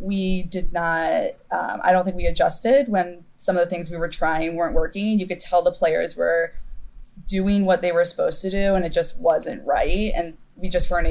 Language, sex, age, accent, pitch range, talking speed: English, female, 20-39, American, 170-205 Hz, 220 wpm